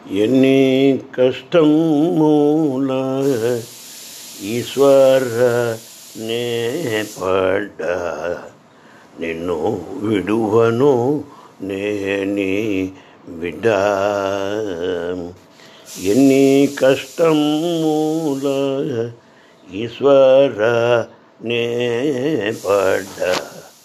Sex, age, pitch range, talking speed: male, 60-79, 100-135 Hz, 30 wpm